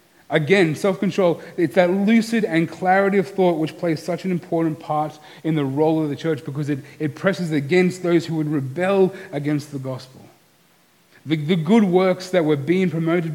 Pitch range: 160-190 Hz